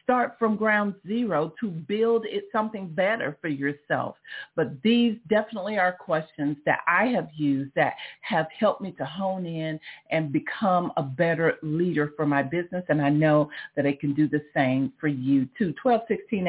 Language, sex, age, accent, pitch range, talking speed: English, female, 50-69, American, 160-200 Hz, 175 wpm